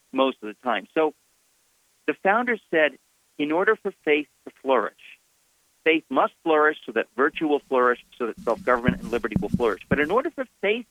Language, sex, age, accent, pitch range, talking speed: English, male, 50-69, American, 125-185 Hz, 185 wpm